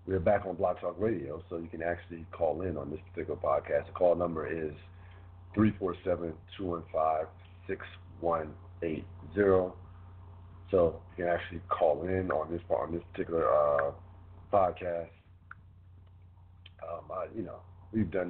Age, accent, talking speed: 50-69, American, 140 wpm